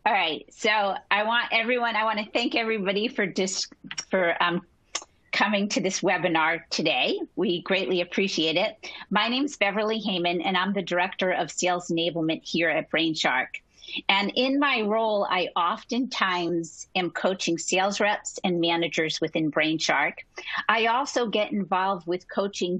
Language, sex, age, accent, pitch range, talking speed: English, female, 40-59, American, 175-215 Hz, 155 wpm